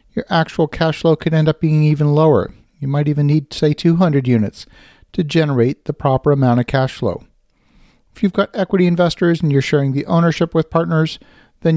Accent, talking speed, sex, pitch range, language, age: American, 195 wpm, male, 135-170 Hz, English, 50-69